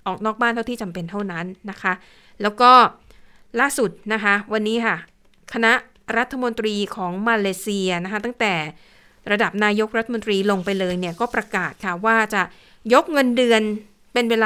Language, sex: Thai, female